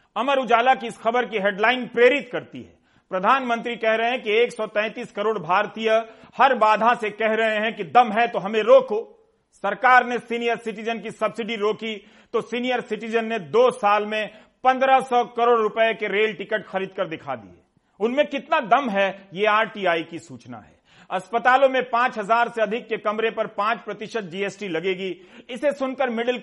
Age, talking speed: 40-59, 175 wpm